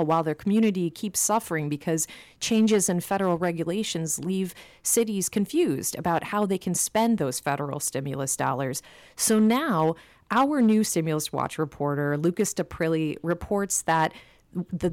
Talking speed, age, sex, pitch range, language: 135 wpm, 30-49, female, 150-190 Hz, English